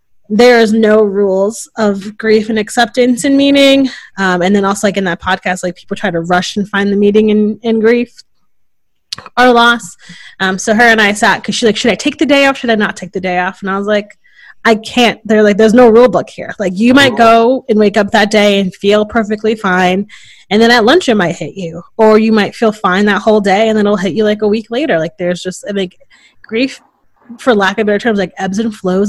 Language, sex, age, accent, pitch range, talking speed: English, female, 20-39, American, 185-230 Hz, 250 wpm